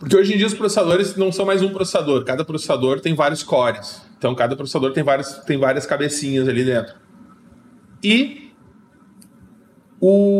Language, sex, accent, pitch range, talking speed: Portuguese, male, Brazilian, 145-190 Hz, 155 wpm